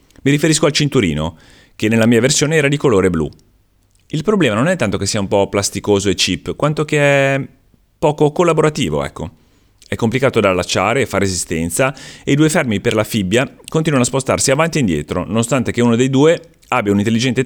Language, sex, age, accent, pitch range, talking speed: Italian, male, 30-49, native, 90-130 Hz, 195 wpm